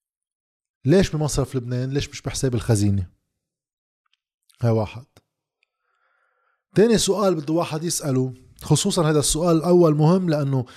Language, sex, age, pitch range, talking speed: Arabic, male, 20-39, 125-165 Hz, 110 wpm